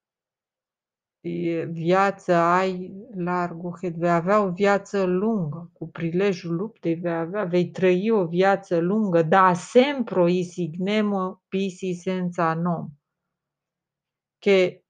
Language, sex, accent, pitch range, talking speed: Romanian, female, native, 175-245 Hz, 105 wpm